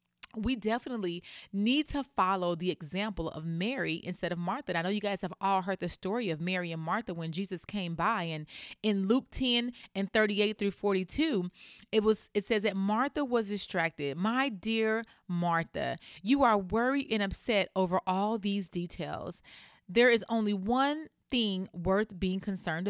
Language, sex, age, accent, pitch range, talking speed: English, female, 30-49, American, 175-220 Hz, 170 wpm